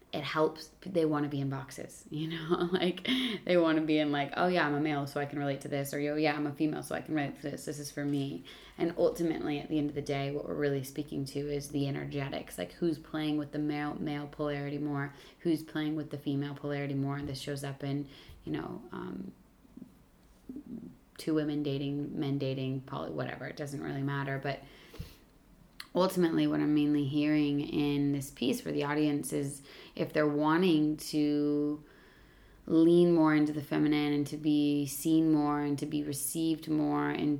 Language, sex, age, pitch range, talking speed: English, female, 20-39, 145-155 Hz, 205 wpm